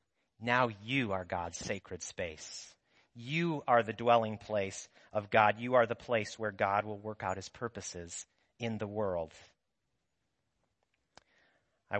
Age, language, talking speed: 40-59, English, 140 wpm